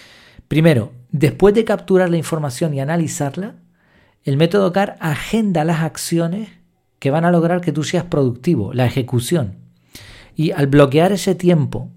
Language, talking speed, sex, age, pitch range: Spanish, 145 wpm, male, 40-59, 130-175 Hz